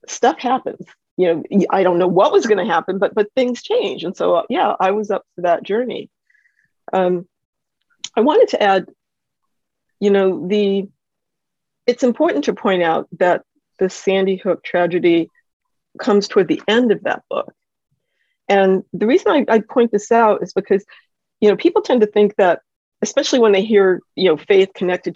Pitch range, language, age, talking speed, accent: 175-220 Hz, English, 40-59, 180 wpm, American